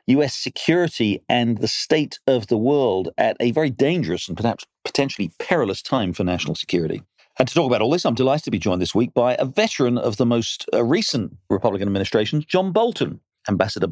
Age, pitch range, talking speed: 40-59, 110-140 Hz, 195 wpm